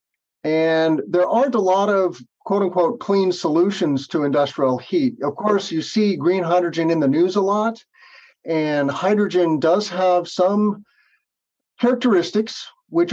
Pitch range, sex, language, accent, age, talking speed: 140-200 Hz, male, English, American, 50-69, 140 wpm